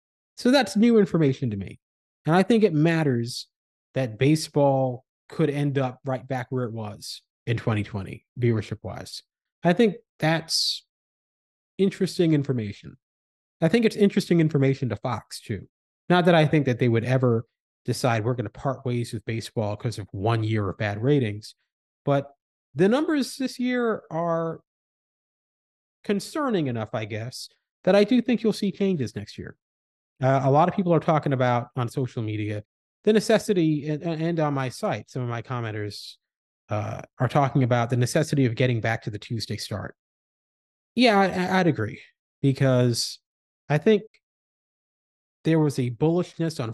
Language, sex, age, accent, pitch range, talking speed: English, male, 30-49, American, 115-160 Hz, 160 wpm